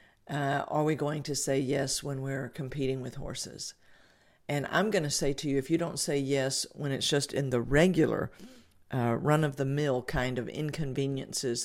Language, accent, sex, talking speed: English, American, female, 180 wpm